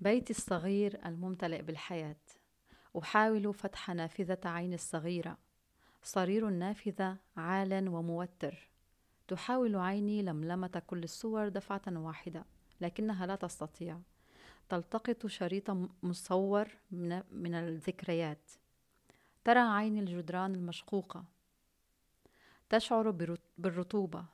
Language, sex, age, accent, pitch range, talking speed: Dutch, female, 30-49, Lebanese, 165-200 Hz, 85 wpm